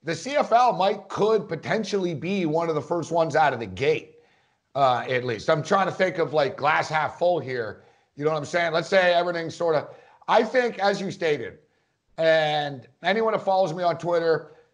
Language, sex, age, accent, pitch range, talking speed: English, male, 50-69, American, 150-190 Hz, 205 wpm